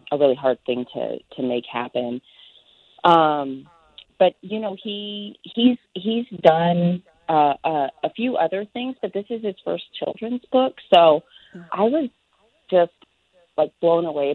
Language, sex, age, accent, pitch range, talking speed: English, female, 30-49, American, 130-165 Hz, 150 wpm